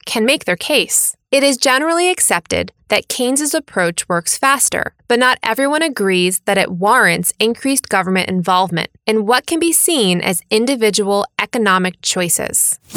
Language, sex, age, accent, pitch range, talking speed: English, female, 20-39, American, 180-255 Hz, 150 wpm